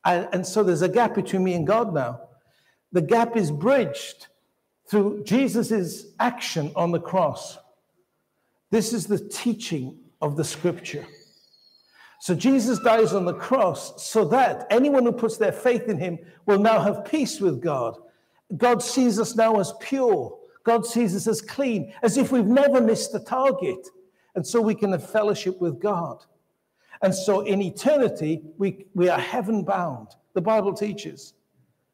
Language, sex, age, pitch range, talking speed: English, male, 60-79, 180-235 Hz, 160 wpm